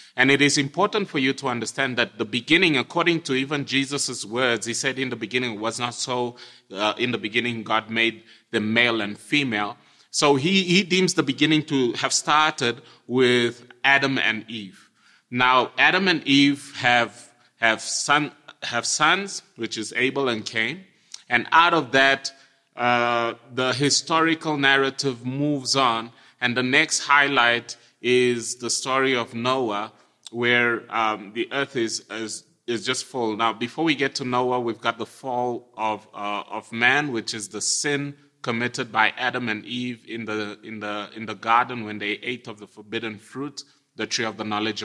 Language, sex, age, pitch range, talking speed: English, male, 30-49, 115-140 Hz, 175 wpm